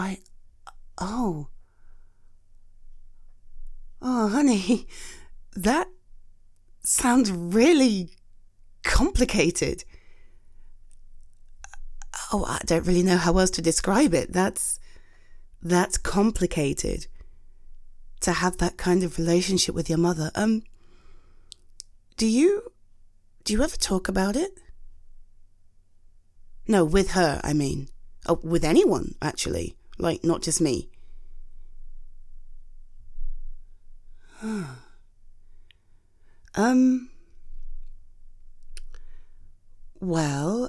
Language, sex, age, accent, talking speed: English, female, 30-49, British, 80 wpm